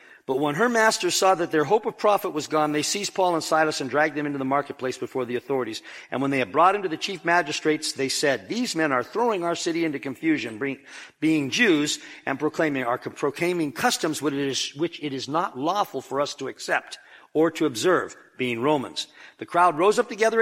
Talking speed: 215 wpm